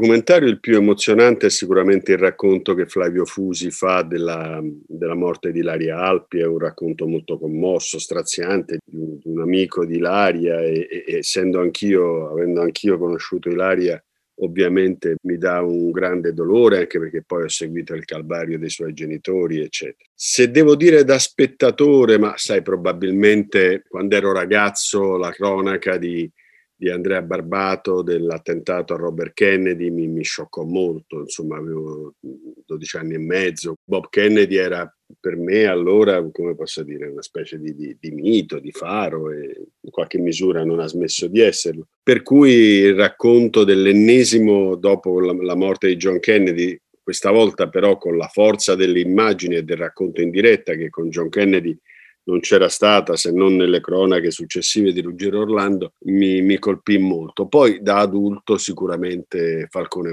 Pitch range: 85-105 Hz